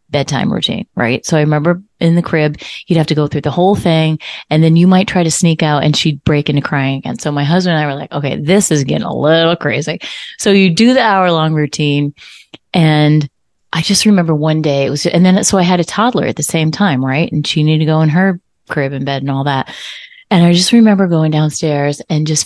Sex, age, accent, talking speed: female, 30-49, American, 250 wpm